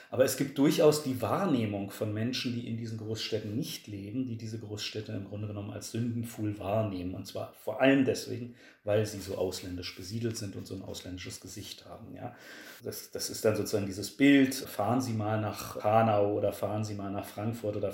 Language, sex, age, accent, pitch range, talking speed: German, male, 30-49, German, 100-125 Hz, 195 wpm